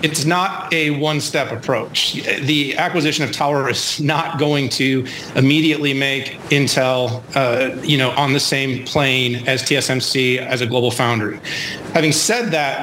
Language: English